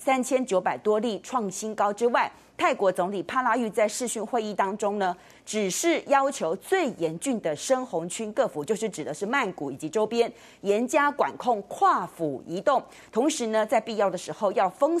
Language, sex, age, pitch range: Chinese, female, 30-49, 190-255 Hz